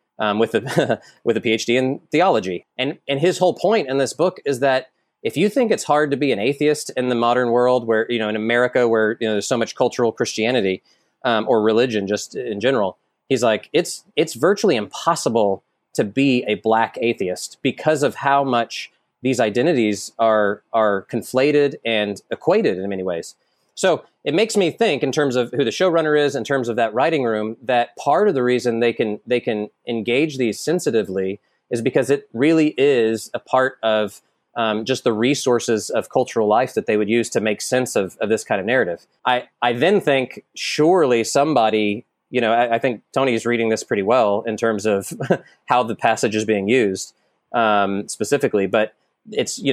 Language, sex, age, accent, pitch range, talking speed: English, male, 30-49, American, 110-135 Hz, 200 wpm